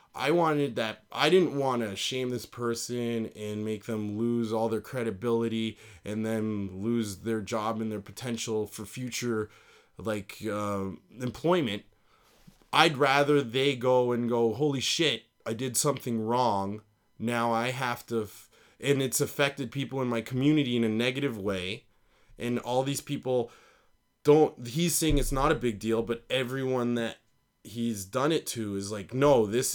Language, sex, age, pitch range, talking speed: English, male, 20-39, 110-135 Hz, 160 wpm